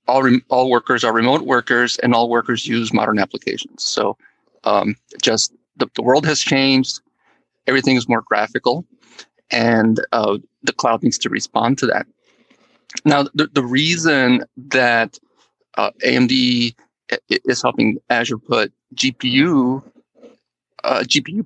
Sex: male